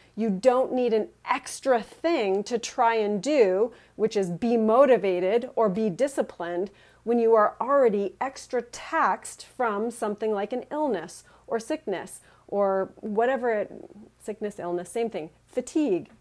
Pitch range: 200-245 Hz